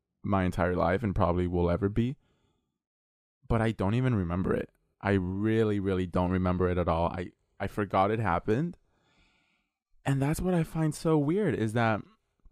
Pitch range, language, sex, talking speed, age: 95-120 Hz, English, male, 175 wpm, 20-39